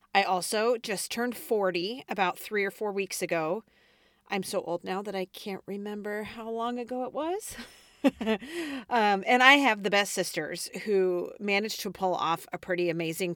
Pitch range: 175-210 Hz